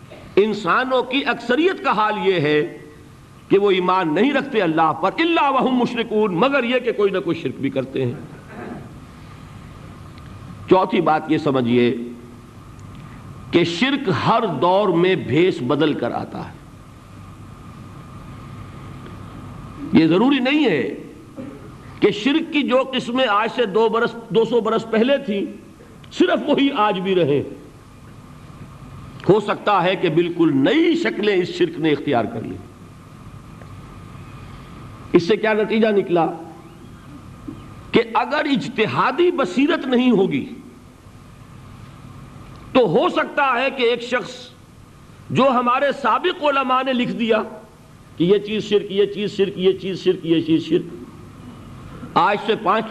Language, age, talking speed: Urdu, 50-69, 135 wpm